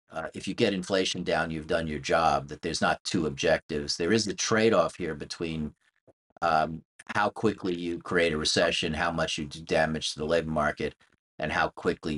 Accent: American